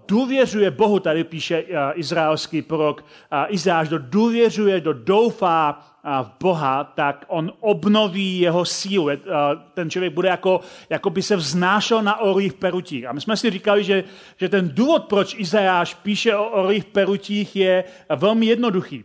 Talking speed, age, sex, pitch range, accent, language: 160 wpm, 40-59, male, 160-195 Hz, native, Czech